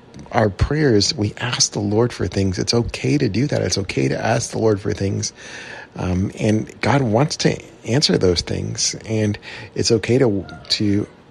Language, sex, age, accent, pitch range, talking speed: English, male, 40-59, American, 95-115 Hz, 180 wpm